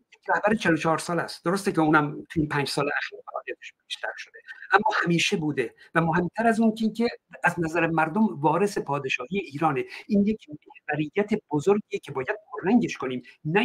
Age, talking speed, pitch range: 60-79, 145 wpm, 160-220 Hz